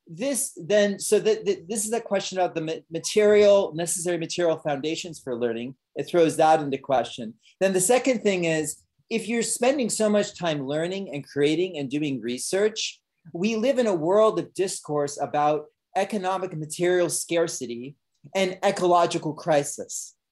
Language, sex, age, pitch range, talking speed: English, male, 30-49, 150-200 Hz, 155 wpm